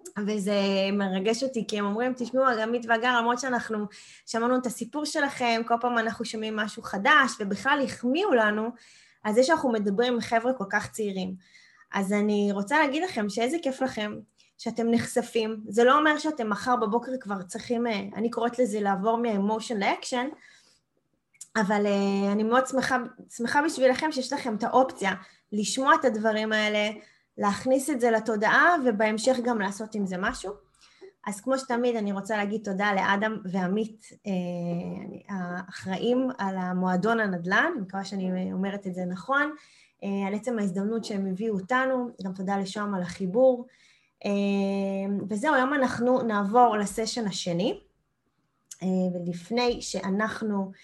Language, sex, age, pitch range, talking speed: Hebrew, female, 20-39, 200-250 Hz, 145 wpm